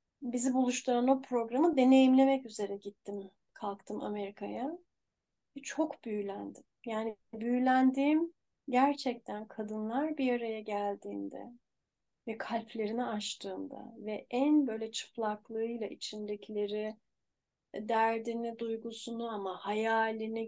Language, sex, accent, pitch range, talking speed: Turkish, female, native, 215-255 Hz, 90 wpm